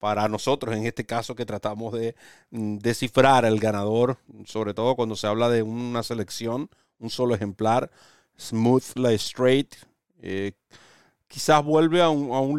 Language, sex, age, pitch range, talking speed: Spanish, male, 40-59, 110-140 Hz, 155 wpm